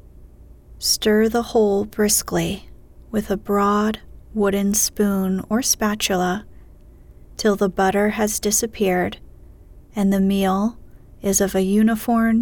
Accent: American